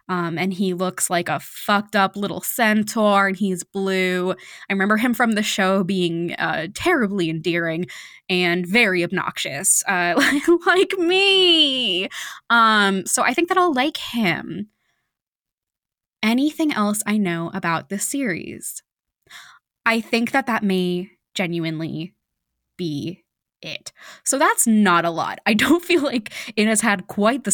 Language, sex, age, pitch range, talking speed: English, female, 20-39, 180-220 Hz, 145 wpm